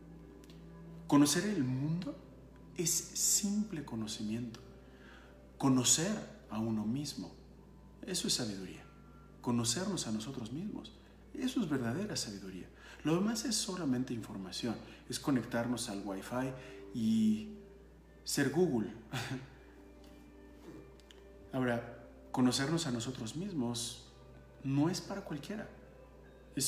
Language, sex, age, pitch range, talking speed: Spanish, male, 40-59, 100-145 Hz, 95 wpm